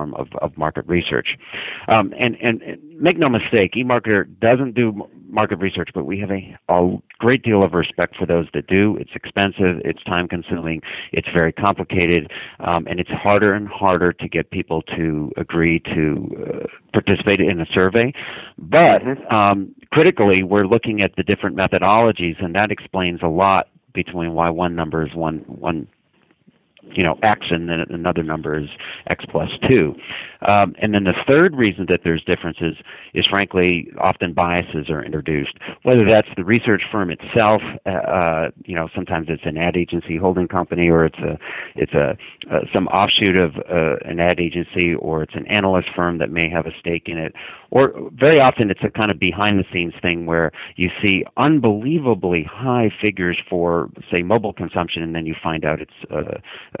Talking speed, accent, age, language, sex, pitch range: 180 wpm, American, 50-69, English, male, 85-105 Hz